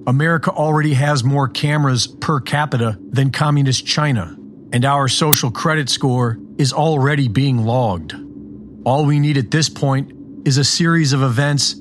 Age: 40-59